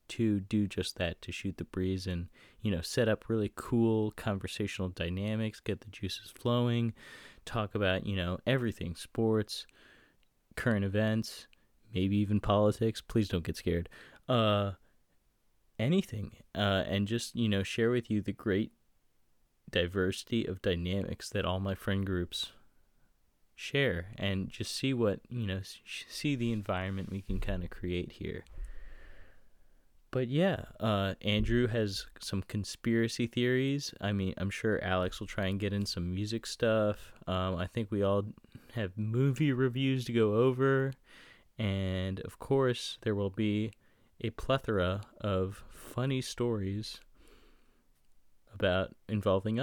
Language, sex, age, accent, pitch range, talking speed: English, male, 20-39, American, 95-115 Hz, 140 wpm